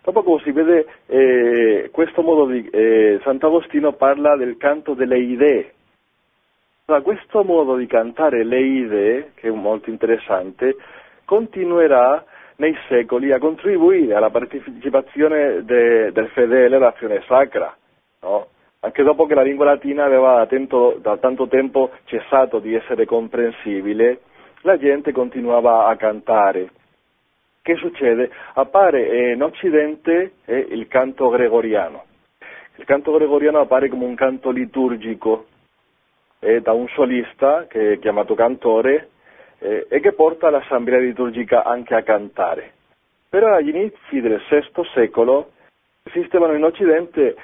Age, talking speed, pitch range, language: 40-59, 130 wpm, 120-160 Hz, Italian